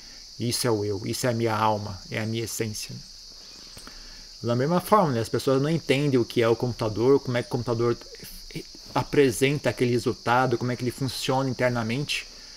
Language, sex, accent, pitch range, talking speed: Portuguese, male, Brazilian, 110-135 Hz, 185 wpm